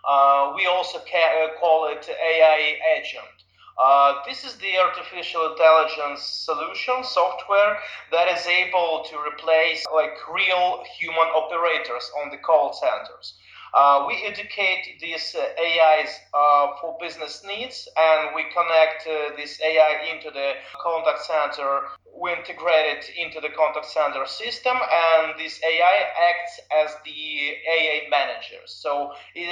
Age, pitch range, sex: 30-49, 150-170 Hz, male